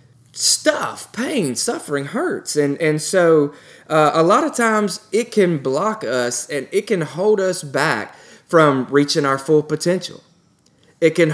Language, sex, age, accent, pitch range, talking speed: English, male, 20-39, American, 140-180 Hz, 155 wpm